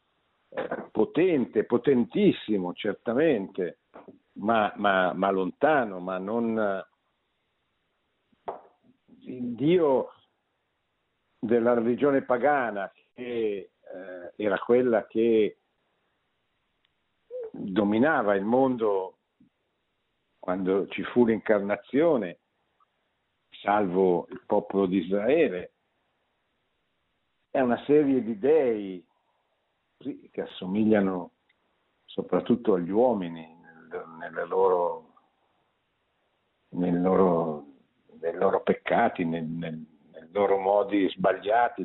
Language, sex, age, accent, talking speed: Italian, male, 60-79, native, 70 wpm